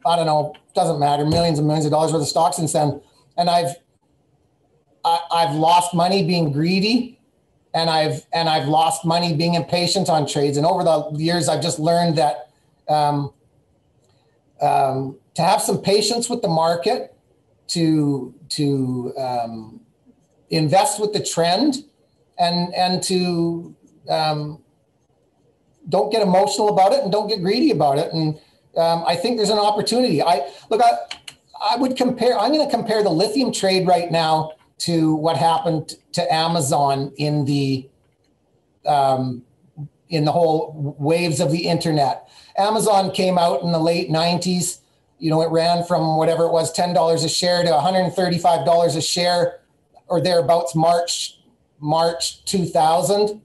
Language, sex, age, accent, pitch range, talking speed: English, male, 30-49, American, 150-180 Hz, 155 wpm